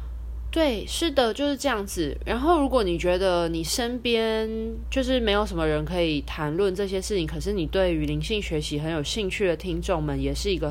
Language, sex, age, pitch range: Chinese, female, 20-39, 150-220 Hz